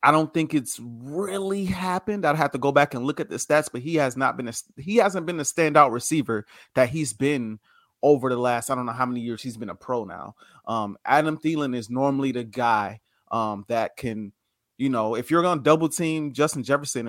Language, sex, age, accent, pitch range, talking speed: English, male, 30-49, American, 120-160 Hz, 225 wpm